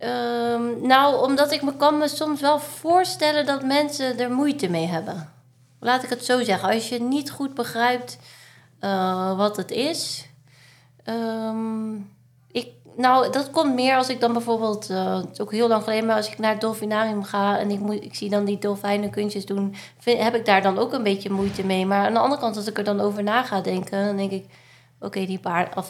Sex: female